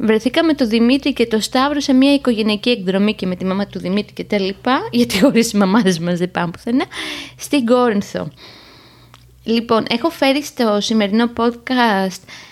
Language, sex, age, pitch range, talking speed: Greek, female, 20-39, 200-255 Hz, 165 wpm